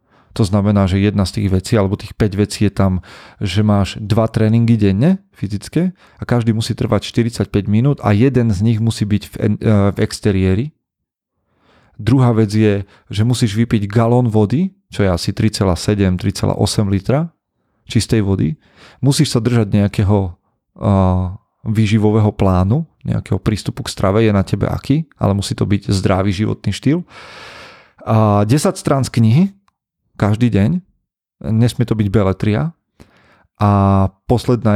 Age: 30-49